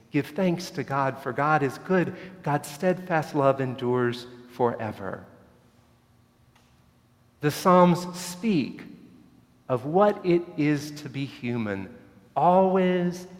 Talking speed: 110 wpm